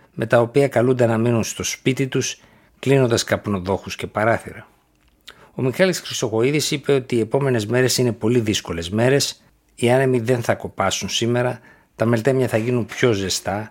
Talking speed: 160 wpm